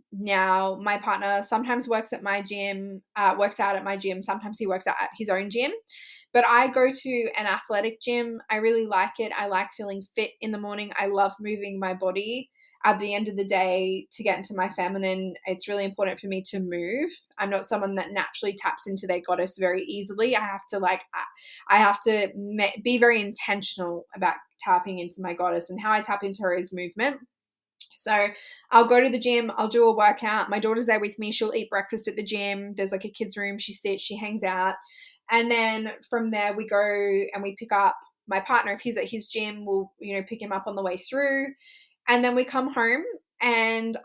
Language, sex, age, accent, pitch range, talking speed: English, female, 10-29, Australian, 195-230 Hz, 220 wpm